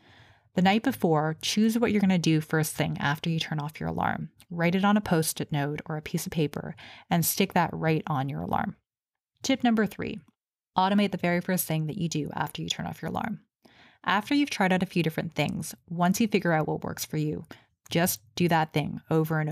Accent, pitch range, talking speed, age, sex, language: American, 160-185 Hz, 225 wpm, 20-39, female, English